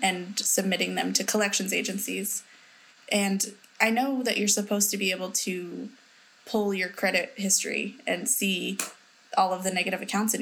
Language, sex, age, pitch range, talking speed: English, female, 20-39, 195-215 Hz, 160 wpm